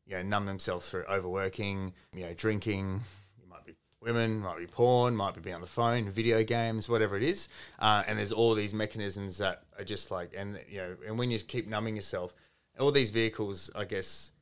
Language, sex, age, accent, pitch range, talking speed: English, male, 30-49, Australian, 95-110 Hz, 210 wpm